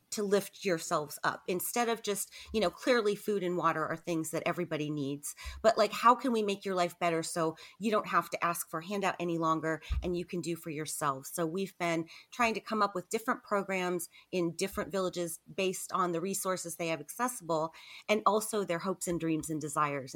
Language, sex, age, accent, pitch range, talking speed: English, female, 30-49, American, 160-195 Hz, 210 wpm